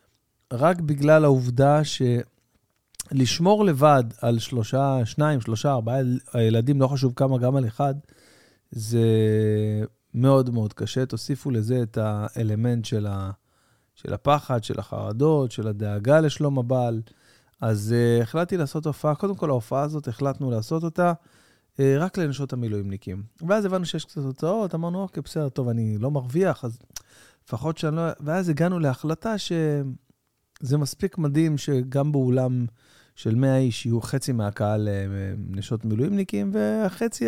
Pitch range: 115-150 Hz